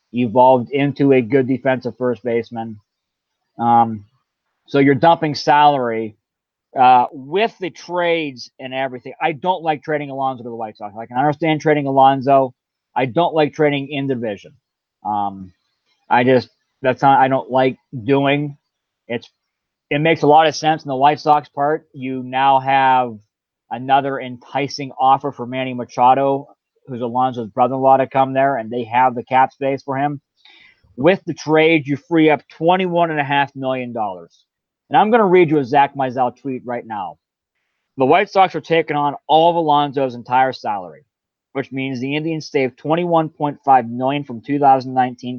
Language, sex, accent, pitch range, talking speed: English, male, American, 125-150 Hz, 165 wpm